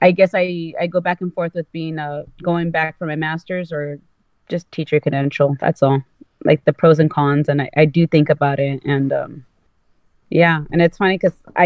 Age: 30-49